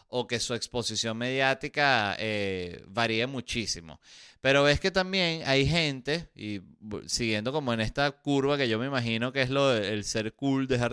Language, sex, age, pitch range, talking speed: Spanish, male, 30-49, 110-145 Hz, 170 wpm